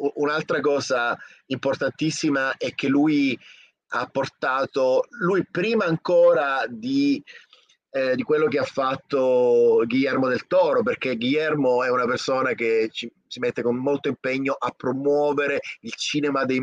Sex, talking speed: male, 135 wpm